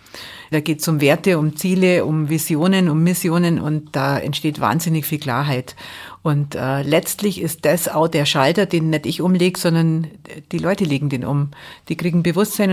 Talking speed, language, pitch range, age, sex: 180 wpm, German, 150-180 Hz, 50-69, female